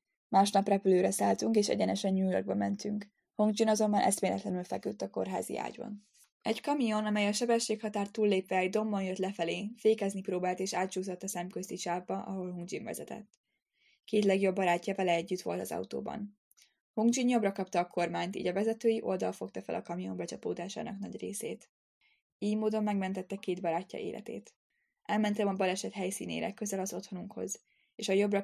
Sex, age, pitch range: female, 10-29, 185-215 Hz